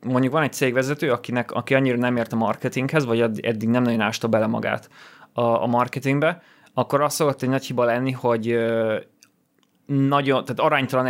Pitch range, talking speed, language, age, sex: 115-130 Hz, 160 wpm, Hungarian, 30-49, male